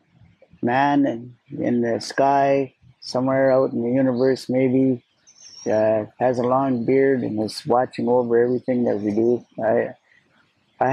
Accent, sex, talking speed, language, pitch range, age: American, male, 135 wpm, English, 110-130 Hz, 20-39